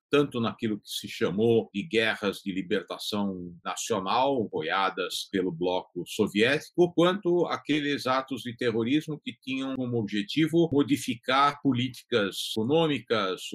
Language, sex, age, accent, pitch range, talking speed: Portuguese, male, 50-69, Brazilian, 100-125 Hz, 115 wpm